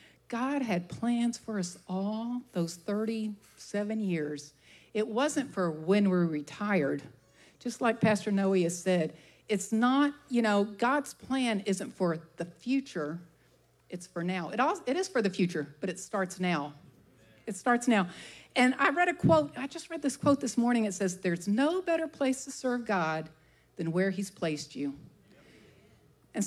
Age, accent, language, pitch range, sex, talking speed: 50-69, American, English, 175-250 Hz, female, 170 wpm